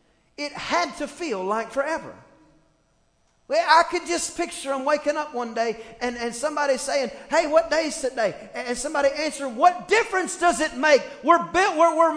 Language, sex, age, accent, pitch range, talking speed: English, male, 40-59, American, 245-340 Hz, 185 wpm